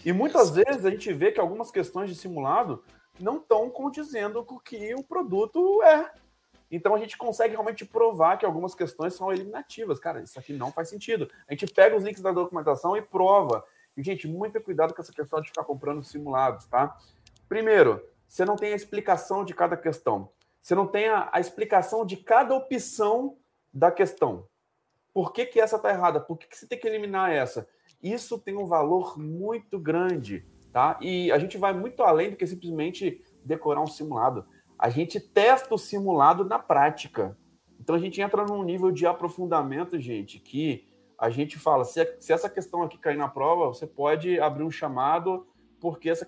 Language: English